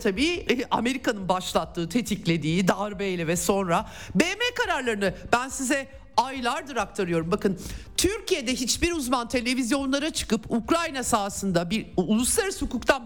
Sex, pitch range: male, 165-255 Hz